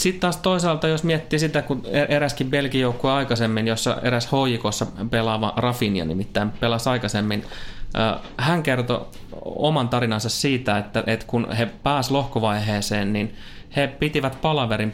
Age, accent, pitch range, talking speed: 20-39, native, 110-140 Hz, 130 wpm